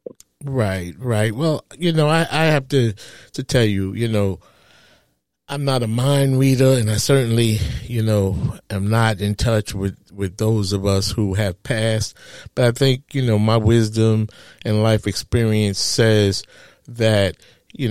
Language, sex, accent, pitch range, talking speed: English, male, American, 105-130 Hz, 165 wpm